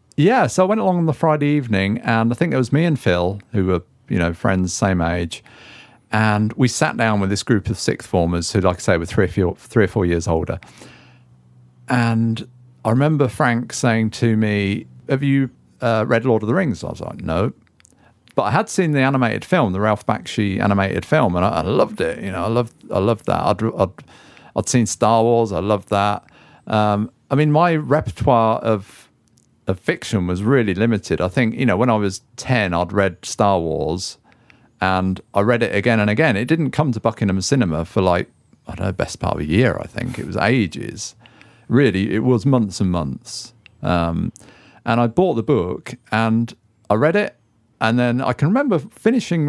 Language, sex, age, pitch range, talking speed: English, male, 50-69, 100-125 Hz, 205 wpm